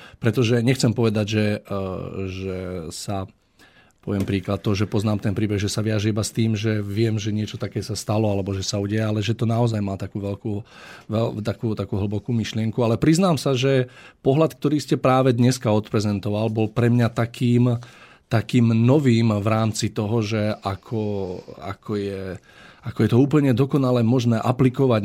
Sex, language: male, Slovak